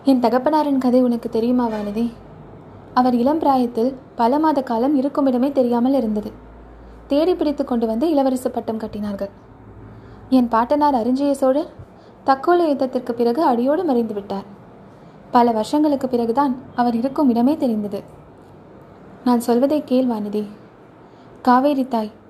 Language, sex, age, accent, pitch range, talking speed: Tamil, female, 20-39, native, 230-275 Hz, 110 wpm